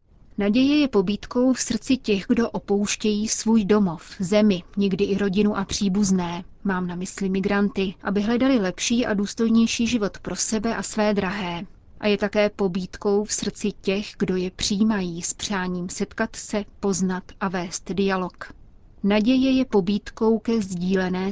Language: Czech